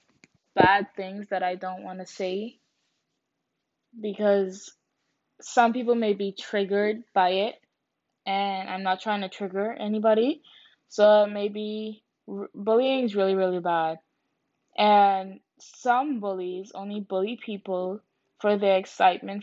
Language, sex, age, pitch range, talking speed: English, female, 10-29, 195-235 Hz, 120 wpm